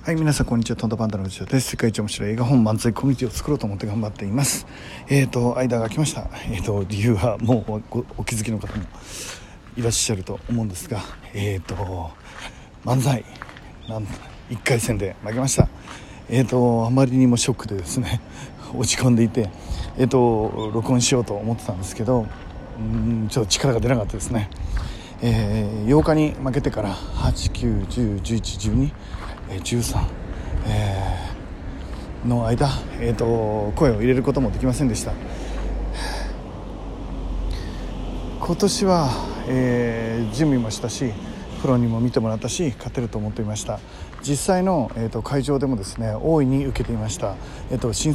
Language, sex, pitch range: Japanese, male, 105-130 Hz